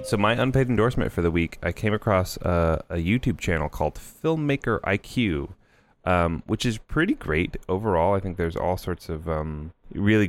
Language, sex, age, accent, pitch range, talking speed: English, male, 30-49, American, 75-100 Hz, 180 wpm